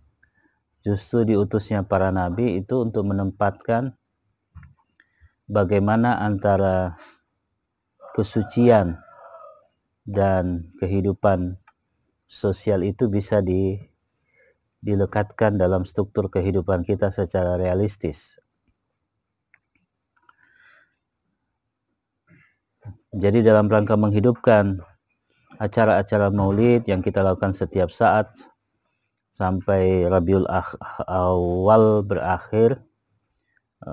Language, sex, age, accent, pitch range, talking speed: Indonesian, male, 30-49, native, 95-105 Hz, 65 wpm